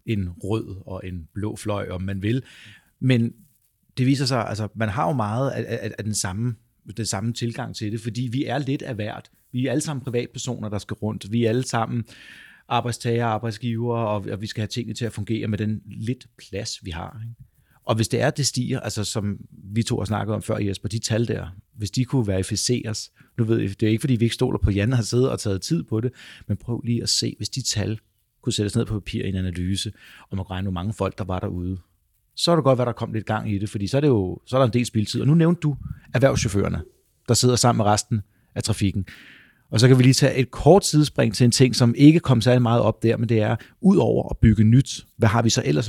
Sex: male